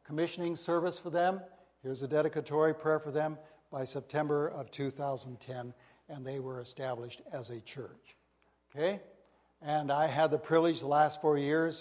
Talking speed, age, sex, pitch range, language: 160 wpm, 60-79, male, 135-170 Hz, English